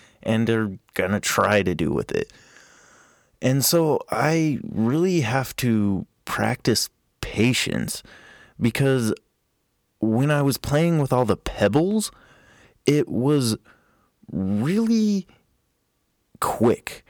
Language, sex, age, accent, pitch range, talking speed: English, male, 20-39, American, 100-130 Hz, 100 wpm